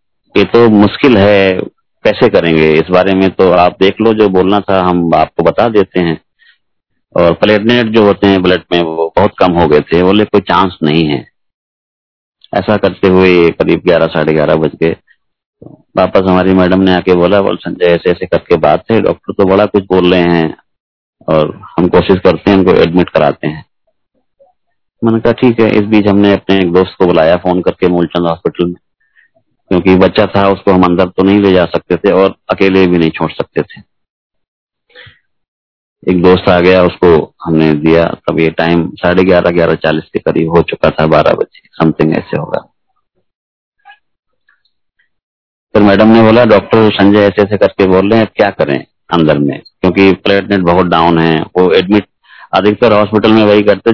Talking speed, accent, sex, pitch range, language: 180 wpm, native, male, 85-105 Hz, Hindi